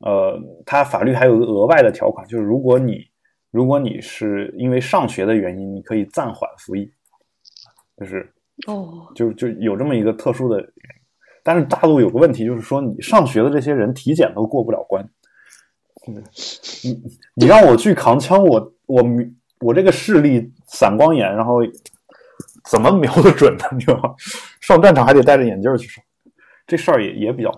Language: Chinese